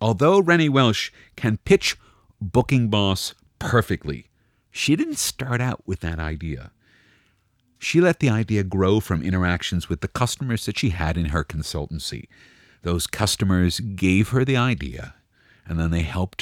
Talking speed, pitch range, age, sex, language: 150 wpm, 85-120 Hz, 50-69, male, English